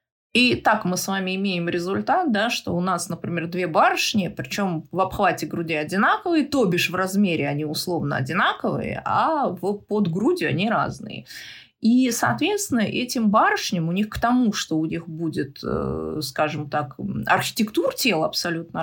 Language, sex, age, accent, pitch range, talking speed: Russian, female, 30-49, native, 170-235 Hz, 150 wpm